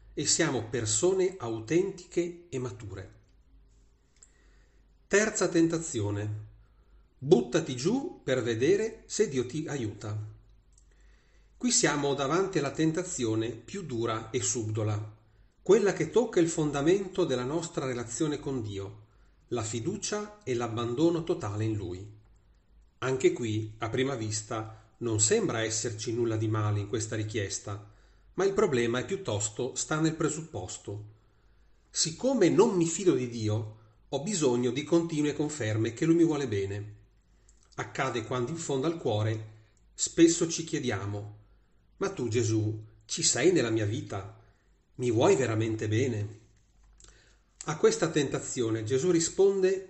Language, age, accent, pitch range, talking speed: Italian, 40-59, native, 105-165 Hz, 125 wpm